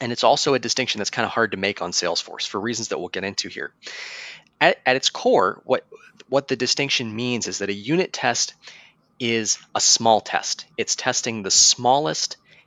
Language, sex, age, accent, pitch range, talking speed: English, male, 20-39, American, 105-135 Hz, 200 wpm